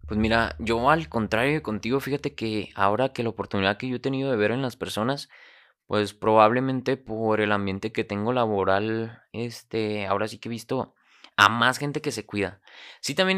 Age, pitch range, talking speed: 20-39, 100-125 Hz, 195 wpm